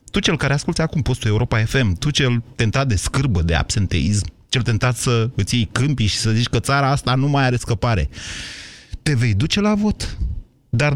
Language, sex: Romanian, male